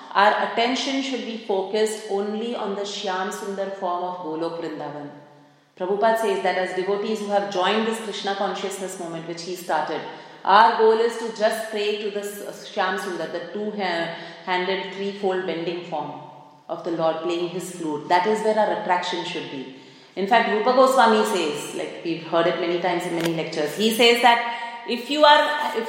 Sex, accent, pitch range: female, Indian, 175-220 Hz